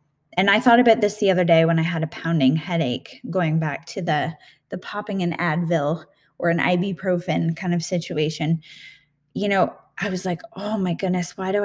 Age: 10-29